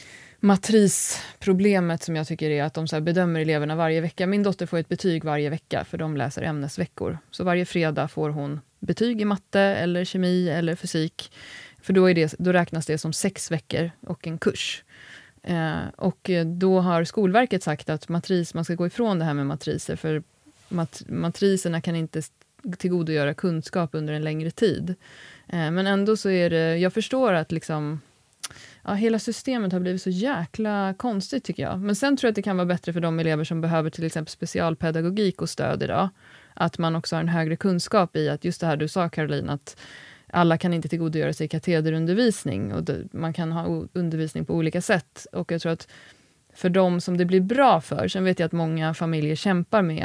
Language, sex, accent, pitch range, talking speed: Swedish, female, native, 160-185 Hz, 200 wpm